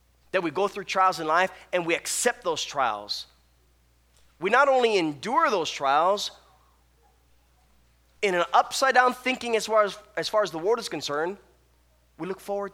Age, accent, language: 20-39, American, English